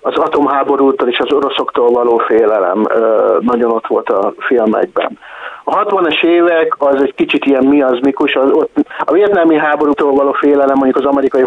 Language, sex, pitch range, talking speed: Hungarian, male, 130-165 Hz, 150 wpm